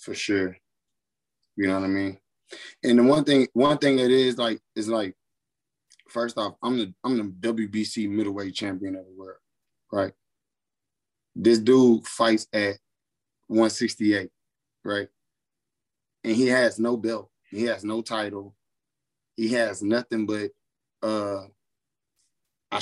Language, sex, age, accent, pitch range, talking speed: English, male, 20-39, American, 100-115 Hz, 135 wpm